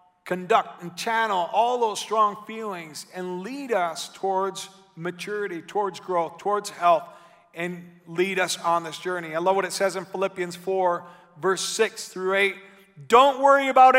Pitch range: 170-220 Hz